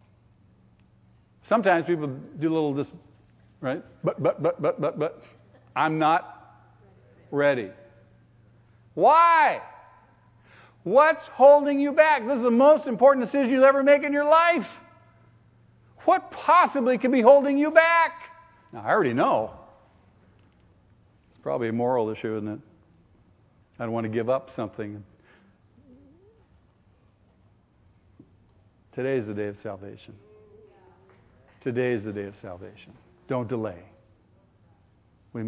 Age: 50-69